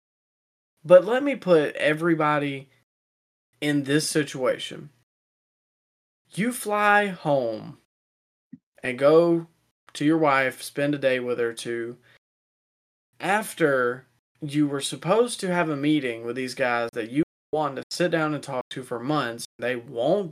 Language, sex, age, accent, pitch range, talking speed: English, male, 20-39, American, 125-165 Hz, 135 wpm